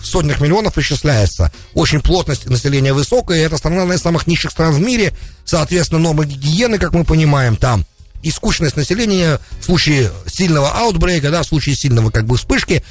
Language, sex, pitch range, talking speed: English, male, 105-170 Hz, 170 wpm